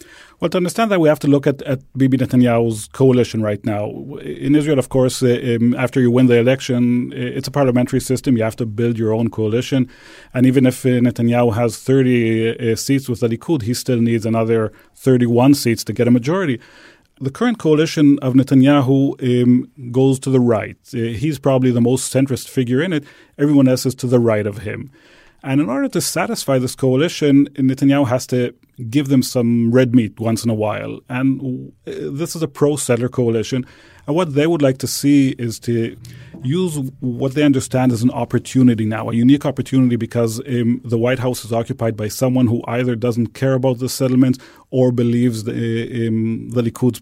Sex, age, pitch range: male, 30-49, 120-135 Hz